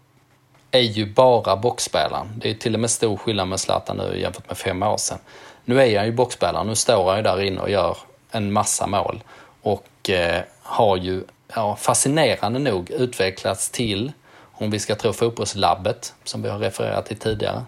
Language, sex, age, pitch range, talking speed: Swedish, male, 20-39, 95-115 Hz, 185 wpm